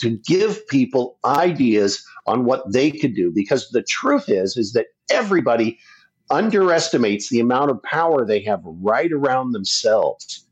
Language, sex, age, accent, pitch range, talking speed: English, male, 50-69, American, 115-195 Hz, 150 wpm